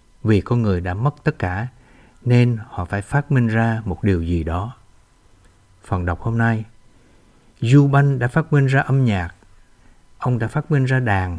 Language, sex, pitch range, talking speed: Vietnamese, male, 100-130 Hz, 185 wpm